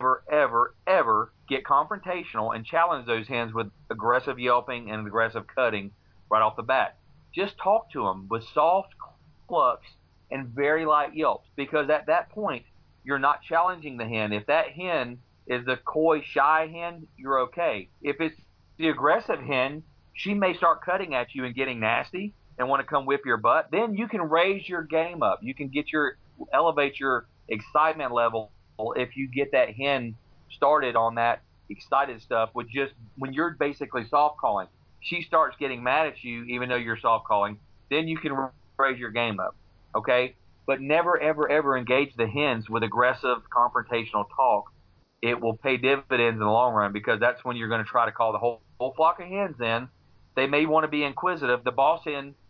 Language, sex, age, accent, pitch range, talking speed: English, male, 40-59, American, 115-160 Hz, 190 wpm